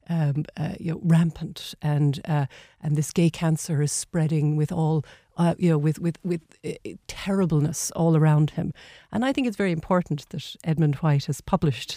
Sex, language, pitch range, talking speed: female, English, 155-180 Hz, 180 wpm